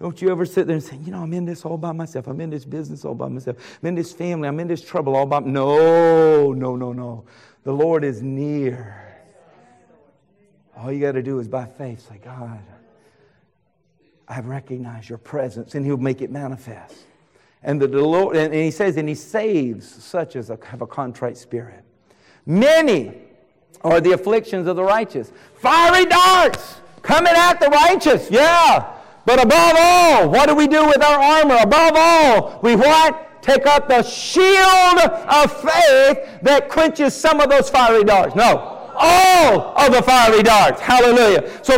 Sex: male